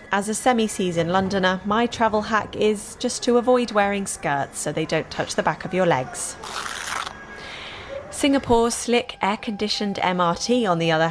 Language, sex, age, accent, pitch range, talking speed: English, female, 20-39, British, 170-220 Hz, 155 wpm